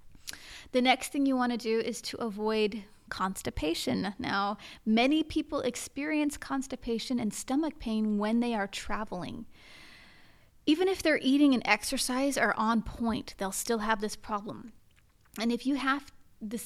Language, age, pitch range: English, 30-49, 210-260 Hz